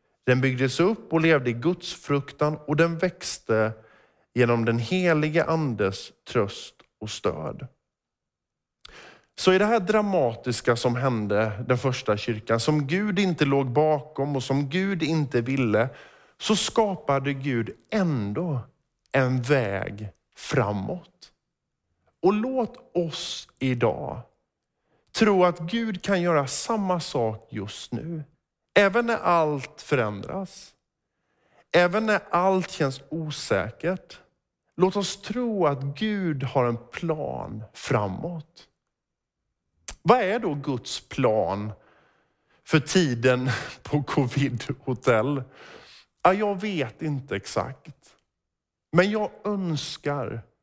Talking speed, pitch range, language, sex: 110 wpm, 125-180 Hz, Swedish, male